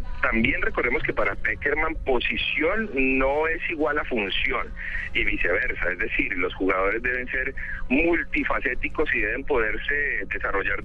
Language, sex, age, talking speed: Spanish, male, 40-59, 135 wpm